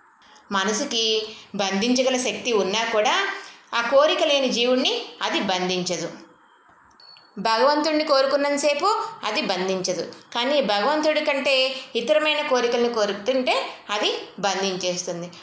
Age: 20-39